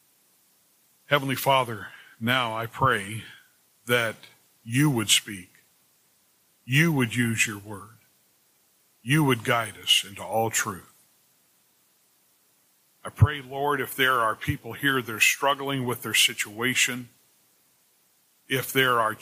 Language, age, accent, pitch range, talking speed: English, 50-69, American, 115-150 Hz, 120 wpm